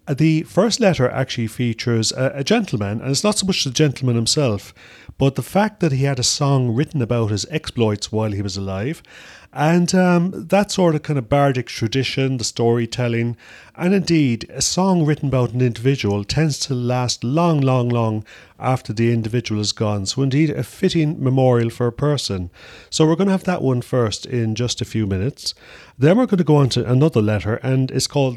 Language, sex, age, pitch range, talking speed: English, male, 40-59, 110-145 Hz, 200 wpm